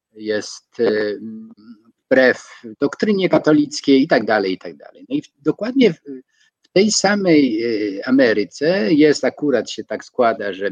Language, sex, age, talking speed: Polish, male, 50-69, 135 wpm